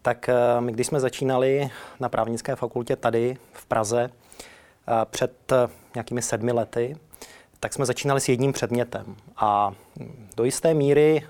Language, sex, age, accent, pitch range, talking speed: Czech, male, 30-49, native, 115-130 Hz, 135 wpm